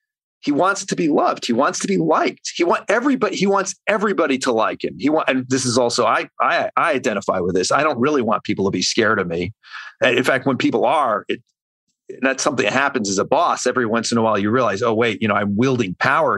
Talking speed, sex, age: 255 wpm, male, 40-59